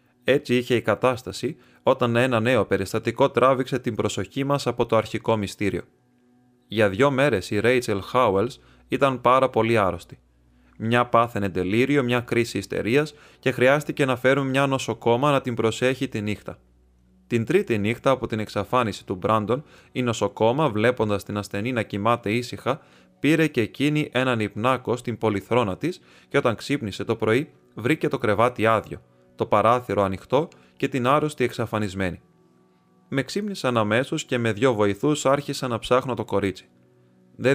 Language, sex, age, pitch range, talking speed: Greek, male, 20-39, 105-130 Hz, 155 wpm